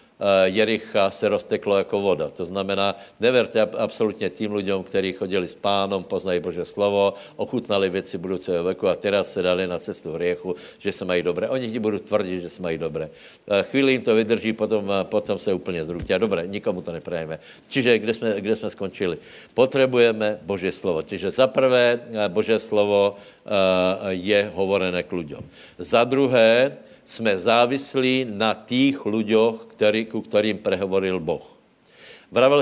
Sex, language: male, Slovak